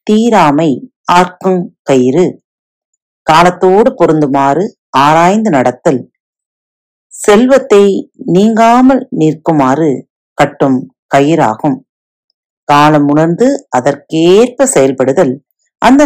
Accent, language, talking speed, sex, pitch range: native, Tamil, 65 wpm, female, 145-205 Hz